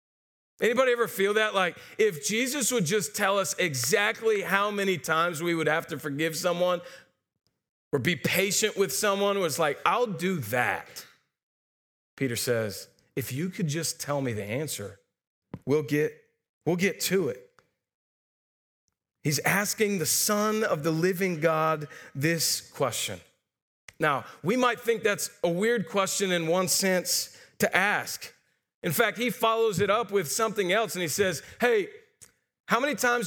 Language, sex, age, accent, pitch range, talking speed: English, male, 40-59, American, 160-215 Hz, 155 wpm